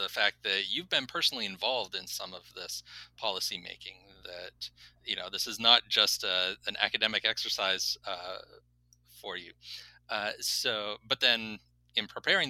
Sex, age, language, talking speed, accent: male, 30-49, English, 155 wpm, American